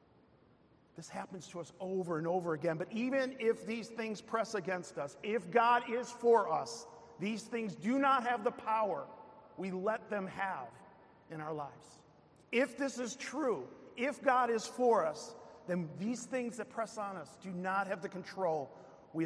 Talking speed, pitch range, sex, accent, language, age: 180 wpm, 180-230 Hz, male, American, English, 50-69